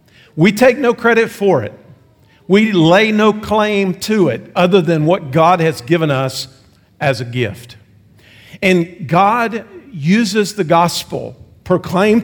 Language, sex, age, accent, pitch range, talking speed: English, male, 50-69, American, 145-195 Hz, 135 wpm